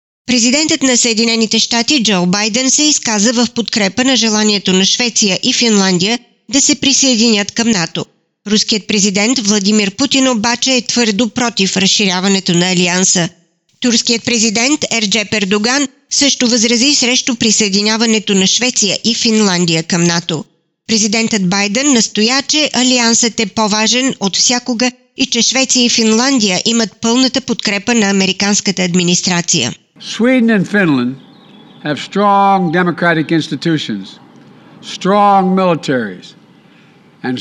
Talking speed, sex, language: 120 wpm, female, Bulgarian